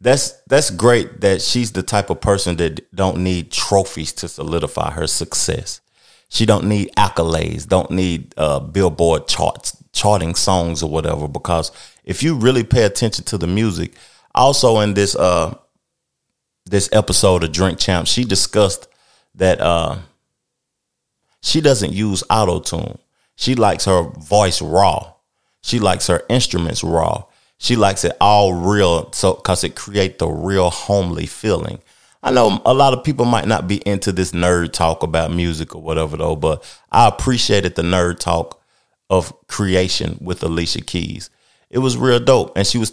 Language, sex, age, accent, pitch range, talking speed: English, male, 30-49, American, 85-110 Hz, 160 wpm